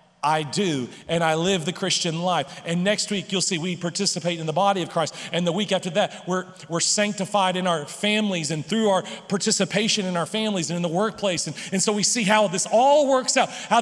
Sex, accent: male, American